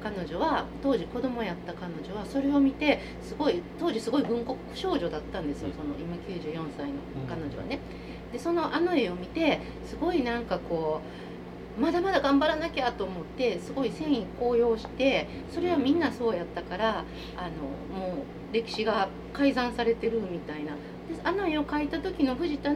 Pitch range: 180-305 Hz